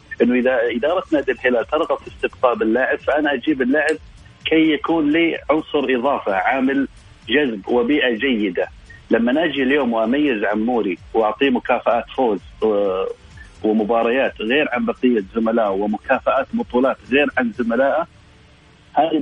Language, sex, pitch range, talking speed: Arabic, male, 120-165 Hz, 125 wpm